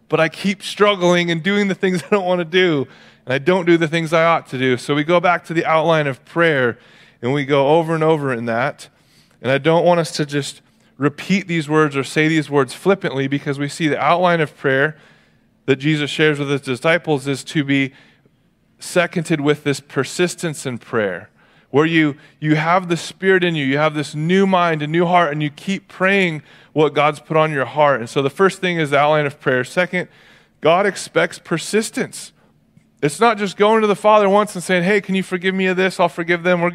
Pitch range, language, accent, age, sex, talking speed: 150-185 Hz, English, American, 20-39, male, 225 wpm